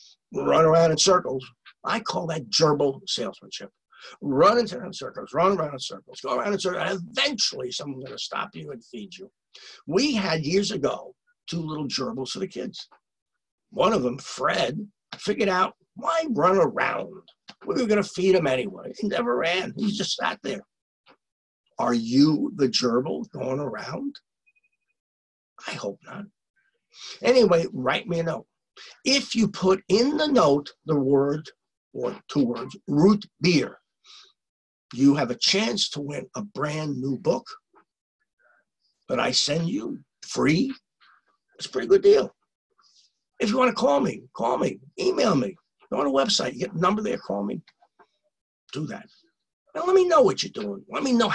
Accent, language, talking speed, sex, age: American, English, 165 wpm, male, 60-79